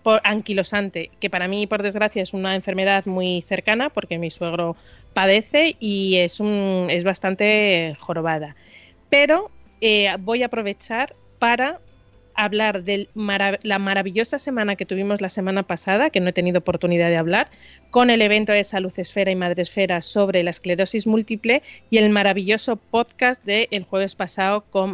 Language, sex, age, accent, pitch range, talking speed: Spanish, female, 30-49, Spanish, 190-225 Hz, 165 wpm